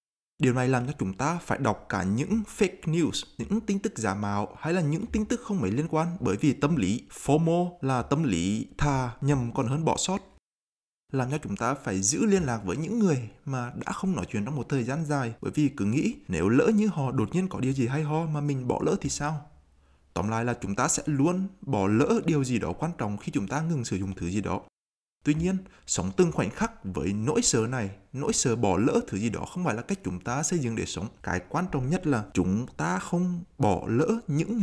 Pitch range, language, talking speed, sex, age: 105-165 Hz, Vietnamese, 250 wpm, male, 20-39